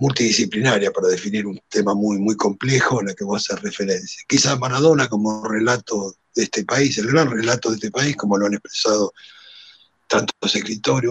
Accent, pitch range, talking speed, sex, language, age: Argentinian, 115-155 Hz, 180 wpm, male, Spanish, 60-79